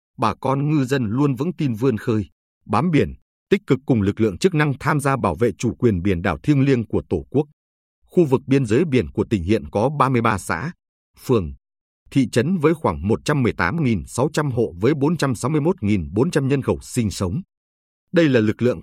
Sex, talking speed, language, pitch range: male, 190 wpm, Vietnamese, 105-145 Hz